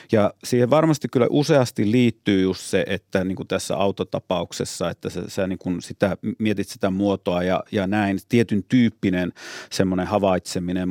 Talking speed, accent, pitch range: 160 wpm, native, 95-115 Hz